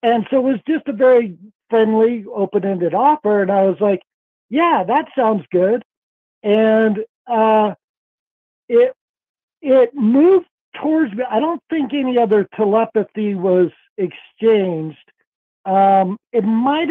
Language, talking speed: English, 130 wpm